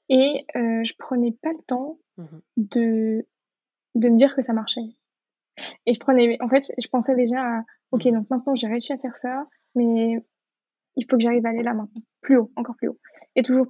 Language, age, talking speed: French, 20-39, 205 wpm